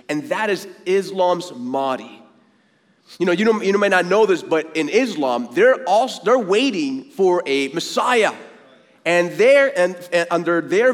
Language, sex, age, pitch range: English, male, 30-49, 180-260 Hz